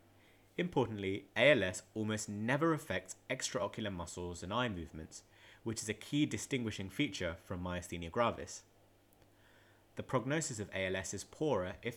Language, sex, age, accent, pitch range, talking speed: English, male, 30-49, British, 90-115 Hz, 130 wpm